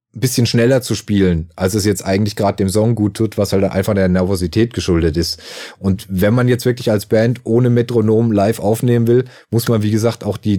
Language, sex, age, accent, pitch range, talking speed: German, male, 30-49, German, 100-115 Hz, 215 wpm